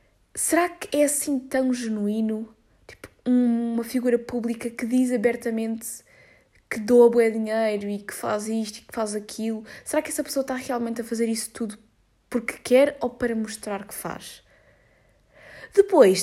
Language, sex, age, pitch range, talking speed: Portuguese, female, 20-39, 210-260 Hz, 160 wpm